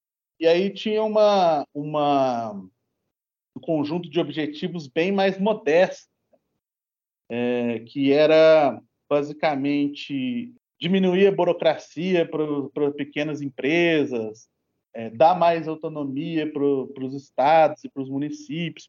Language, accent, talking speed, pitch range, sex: Portuguese, Brazilian, 105 wpm, 125-160 Hz, male